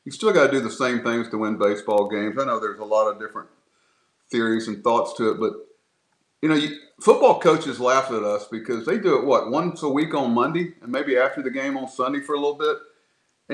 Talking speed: 245 wpm